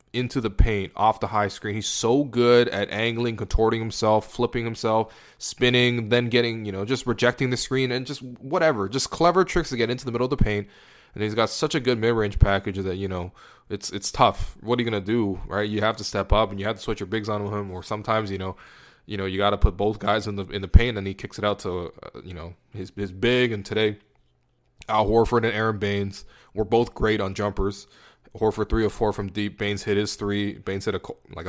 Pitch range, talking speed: 100-120 Hz, 245 wpm